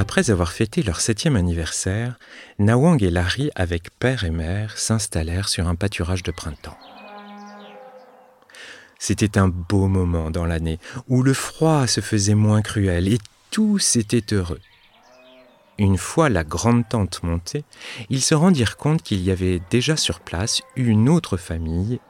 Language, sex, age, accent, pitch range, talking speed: French, male, 40-59, French, 90-120 Hz, 150 wpm